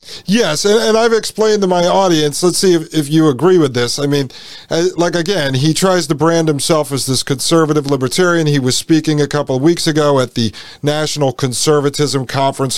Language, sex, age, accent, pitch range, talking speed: English, male, 40-59, American, 130-165 Hz, 185 wpm